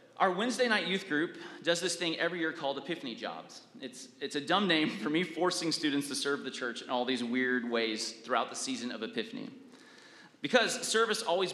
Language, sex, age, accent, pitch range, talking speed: English, male, 30-49, American, 145-245 Hz, 205 wpm